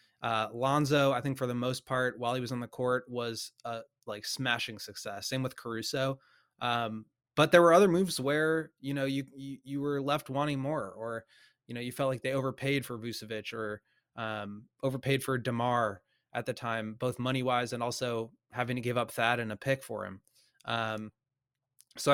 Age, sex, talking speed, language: 20-39, male, 190 wpm, English